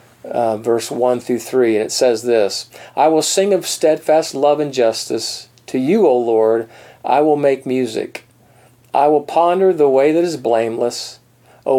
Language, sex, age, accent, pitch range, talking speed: English, male, 40-59, American, 120-145 Hz, 175 wpm